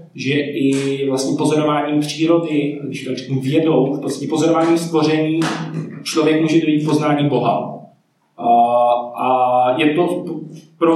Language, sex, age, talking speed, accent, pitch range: Czech, male, 20-39, 120 wpm, native, 130-165 Hz